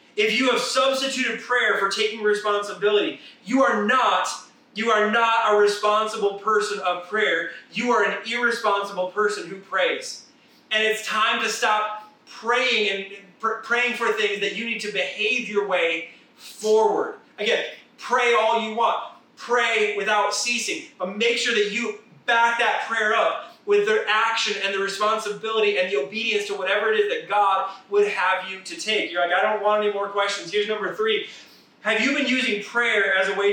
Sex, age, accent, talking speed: male, 30-49, American, 175 wpm